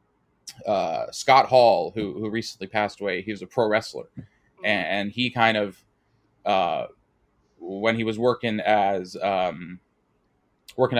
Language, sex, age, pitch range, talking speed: English, male, 20-39, 105-120 Hz, 140 wpm